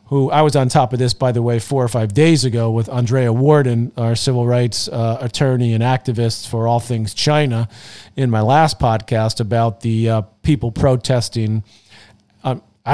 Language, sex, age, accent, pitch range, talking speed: English, male, 40-59, American, 110-135 Hz, 180 wpm